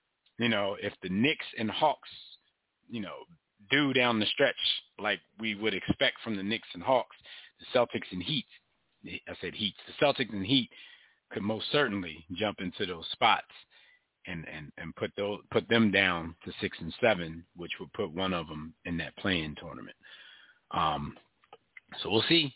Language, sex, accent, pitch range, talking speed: English, male, American, 100-130 Hz, 175 wpm